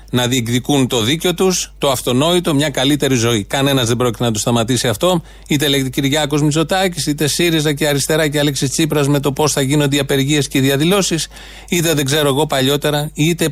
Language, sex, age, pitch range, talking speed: Greek, male, 30-49, 125-150 Hz, 195 wpm